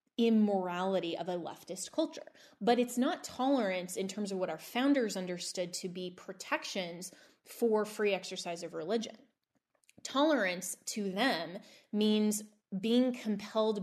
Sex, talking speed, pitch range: female, 130 wpm, 185-235 Hz